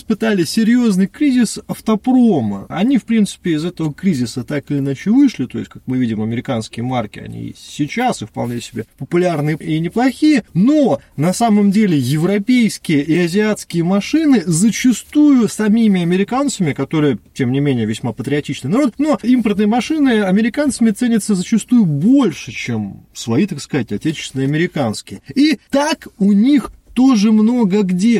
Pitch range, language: 145-225 Hz, Russian